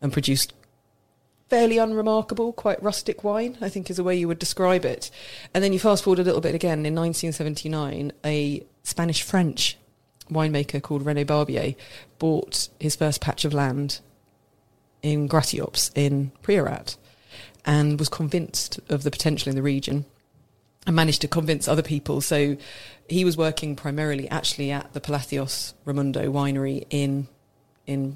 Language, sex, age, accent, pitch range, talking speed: English, female, 30-49, British, 135-155 Hz, 150 wpm